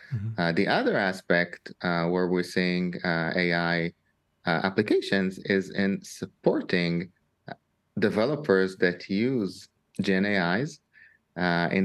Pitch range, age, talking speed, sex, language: 90-115 Hz, 30-49, 110 wpm, male, English